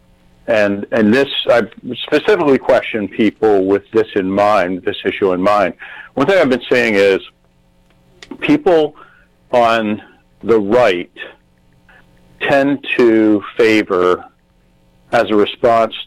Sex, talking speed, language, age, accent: male, 115 wpm, English, 50-69, American